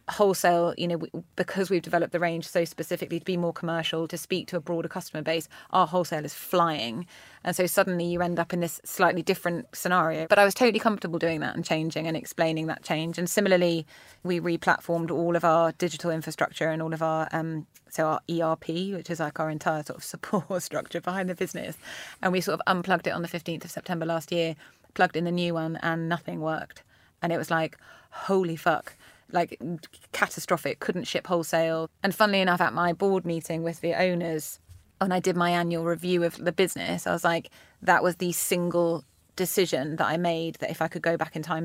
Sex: female